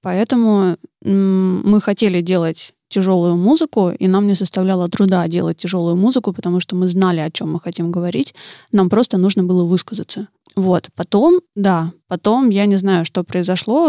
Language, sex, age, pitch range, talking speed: Russian, female, 20-39, 175-200 Hz, 160 wpm